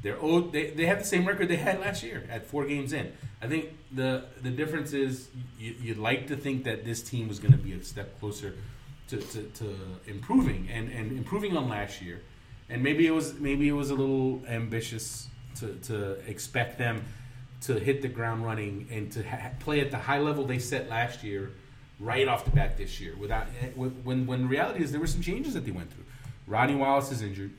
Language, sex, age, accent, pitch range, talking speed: English, male, 30-49, American, 115-145 Hz, 220 wpm